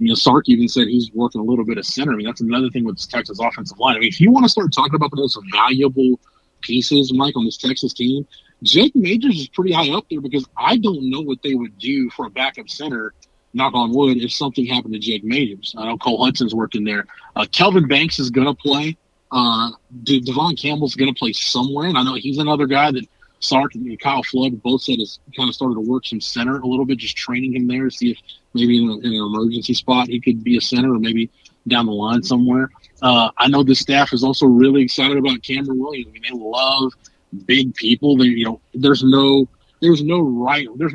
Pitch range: 120-140 Hz